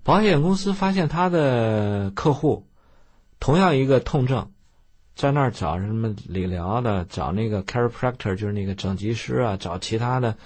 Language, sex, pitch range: Chinese, male, 95-120 Hz